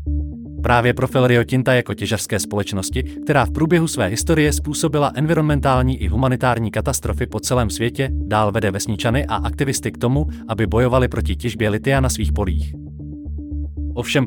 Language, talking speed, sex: Czech, 150 wpm, male